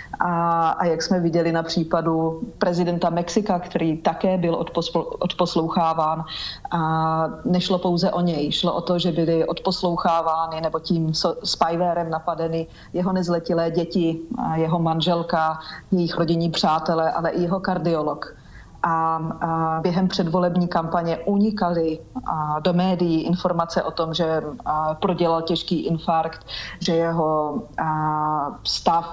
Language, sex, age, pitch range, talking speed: Slovak, female, 30-49, 160-175 Hz, 115 wpm